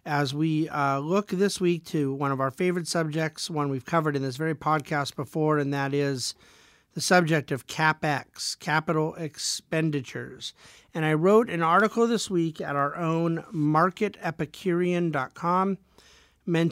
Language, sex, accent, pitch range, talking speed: English, male, American, 145-170 Hz, 145 wpm